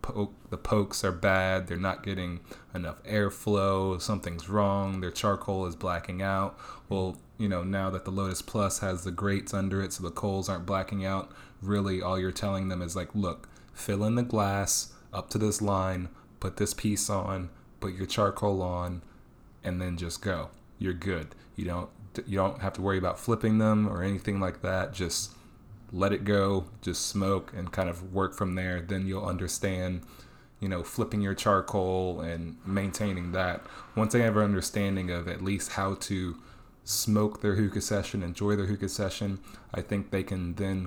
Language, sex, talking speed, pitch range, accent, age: English, male, 185 wpm, 90-105 Hz, American, 20-39